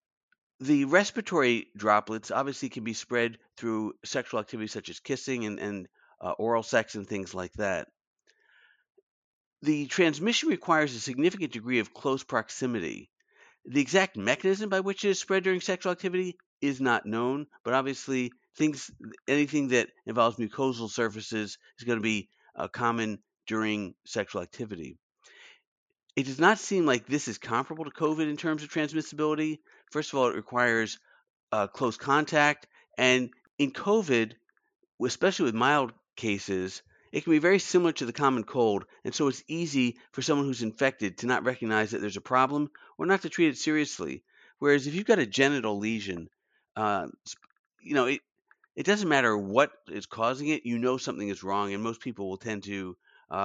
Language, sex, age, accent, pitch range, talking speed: English, male, 50-69, American, 110-155 Hz, 170 wpm